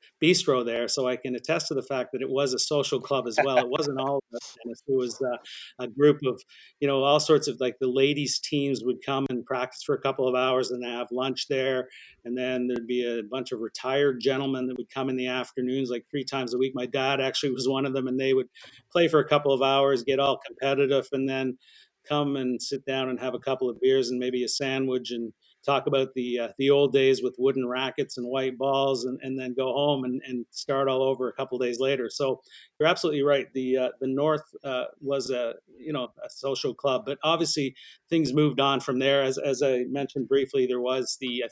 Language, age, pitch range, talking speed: English, 40-59, 125-140 Hz, 240 wpm